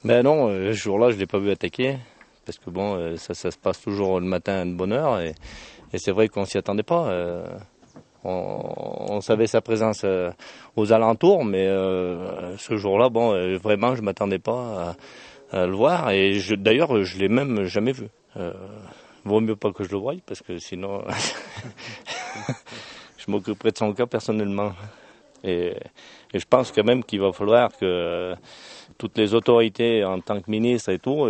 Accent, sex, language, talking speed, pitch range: French, male, French, 195 wpm, 90-110 Hz